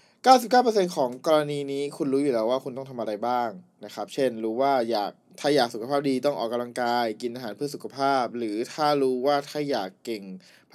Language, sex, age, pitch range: Thai, male, 20-39, 110-140 Hz